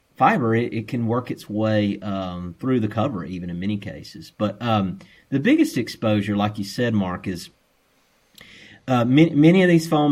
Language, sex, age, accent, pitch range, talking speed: English, male, 30-49, American, 100-120 Hz, 185 wpm